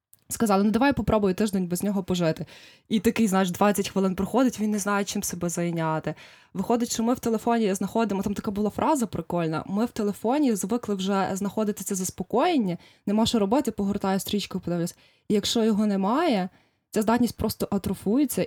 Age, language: 20-39, Ukrainian